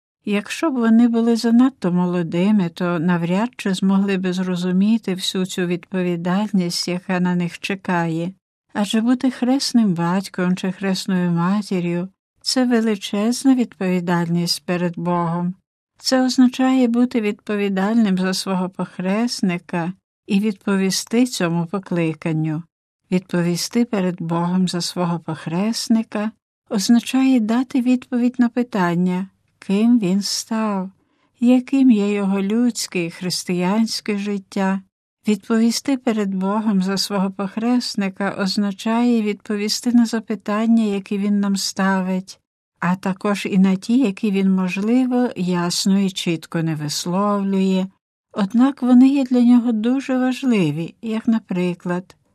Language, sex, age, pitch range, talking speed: Ukrainian, female, 60-79, 180-230 Hz, 115 wpm